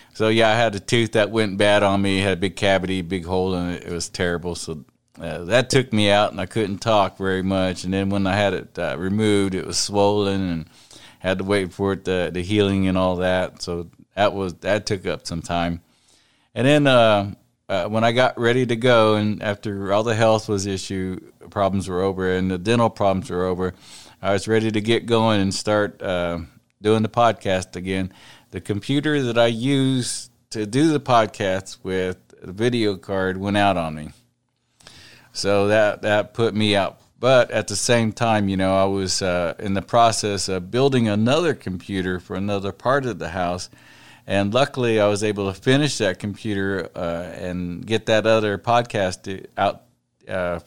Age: 50-69